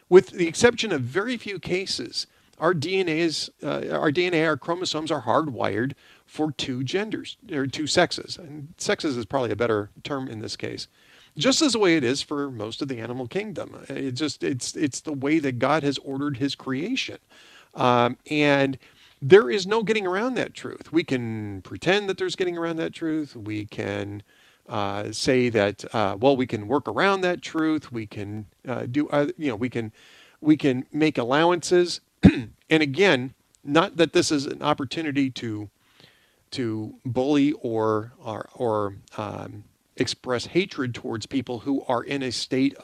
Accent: American